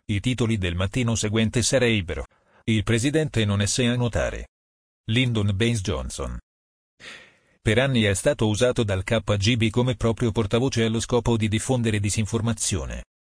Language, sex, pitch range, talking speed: Italian, male, 100-120 Hz, 135 wpm